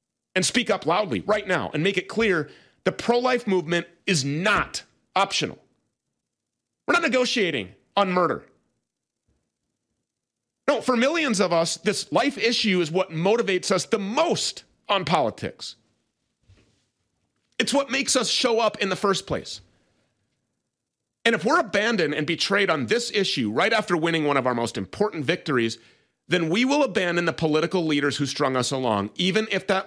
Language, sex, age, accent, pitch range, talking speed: English, male, 40-59, American, 125-210 Hz, 160 wpm